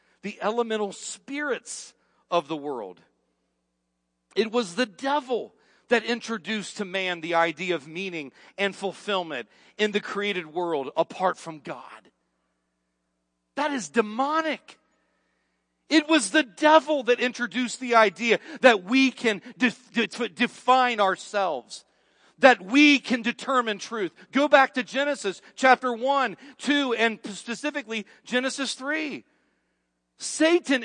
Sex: male